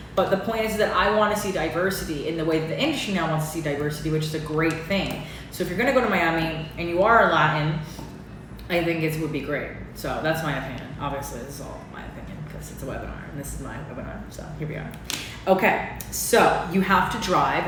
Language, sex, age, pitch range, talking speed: English, female, 20-39, 155-190 Hz, 250 wpm